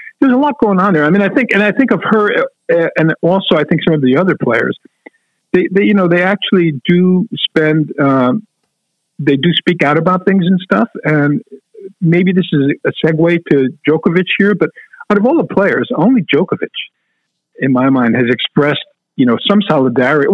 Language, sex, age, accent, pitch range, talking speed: English, male, 50-69, American, 130-185 Hz, 200 wpm